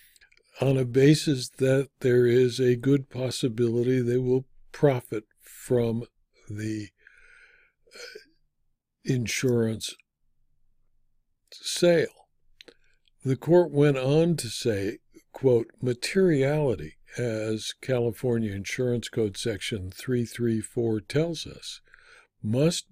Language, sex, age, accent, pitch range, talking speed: English, male, 60-79, American, 120-155 Hz, 85 wpm